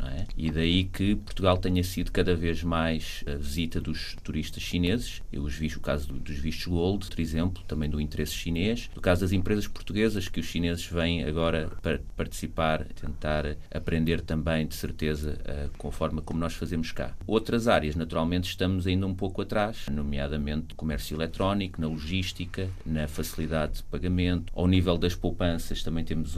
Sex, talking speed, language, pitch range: male, 175 wpm, Portuguese, 75-90 Hz